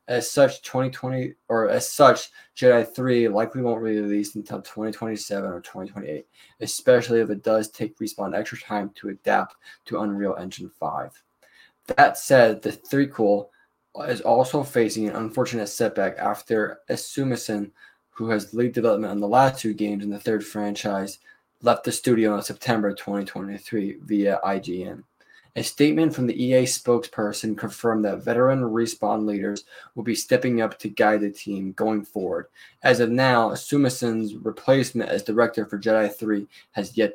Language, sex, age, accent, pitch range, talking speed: English, male, 20-39, American, 105-125 Hz, 155 wpm